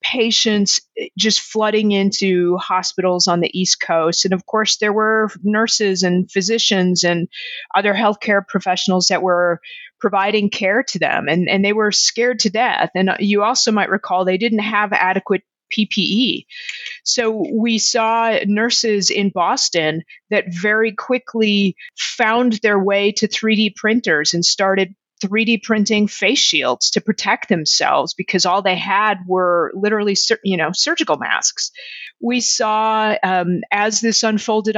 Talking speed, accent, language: 145 wpm, American, English